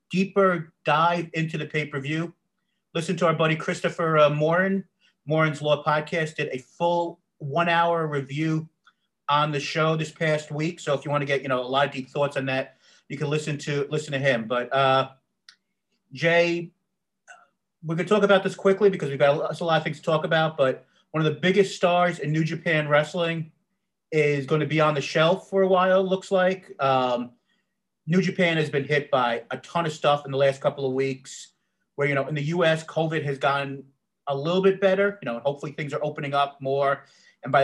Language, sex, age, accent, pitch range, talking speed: English, male, 40-59, American, 140-175 Hz, 210 wpm